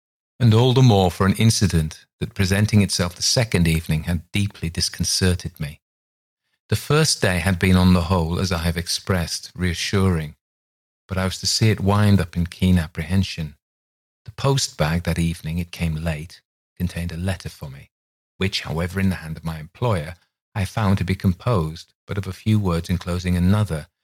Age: 40-59